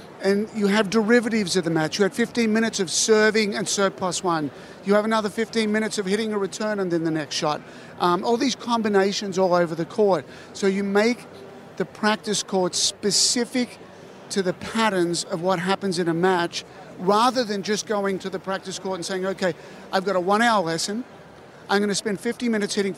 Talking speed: 205 wpm